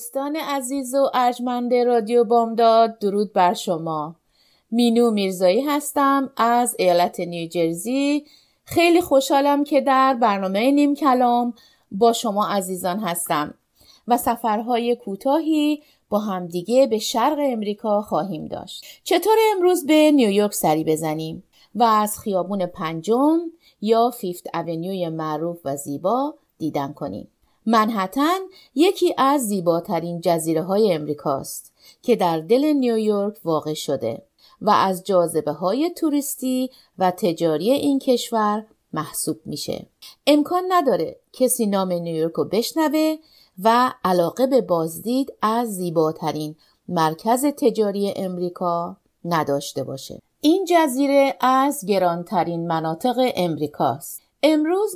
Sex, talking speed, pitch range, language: female, 110 wpm, 180-275 Hz, Persian